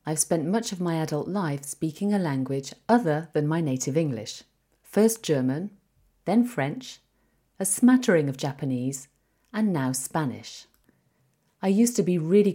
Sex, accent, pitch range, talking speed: female, British, 140-200 Hz, 150 wpm